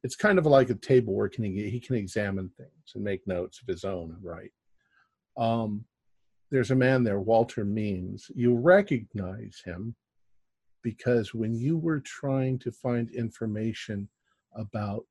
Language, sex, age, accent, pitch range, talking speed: English, male, 50-69, American, 100-120 Hz, 155 wpm